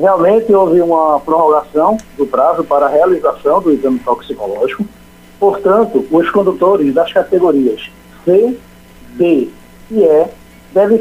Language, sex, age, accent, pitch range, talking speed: Portuguese, male, 60-79, Brazilian, 165-230 Hz, 120 wpm